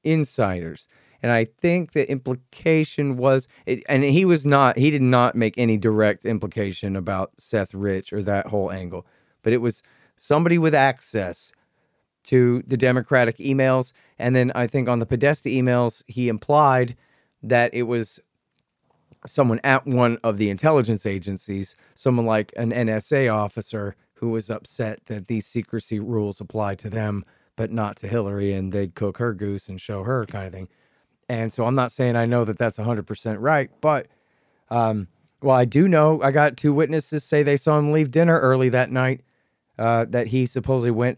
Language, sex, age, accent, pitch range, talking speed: English, male, 40-59, American, 105-130 Hz, 180 wpm